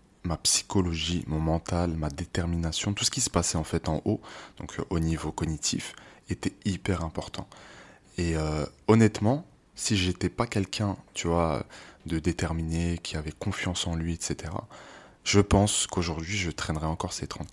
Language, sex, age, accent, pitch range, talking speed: French, male, 20-39, French, 80-95 Hz, 160 wpm